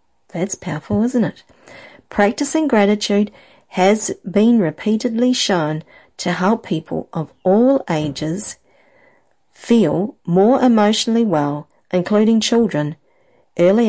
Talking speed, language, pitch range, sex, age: 100 wpm, English, 170-230 Hz, female, 50-69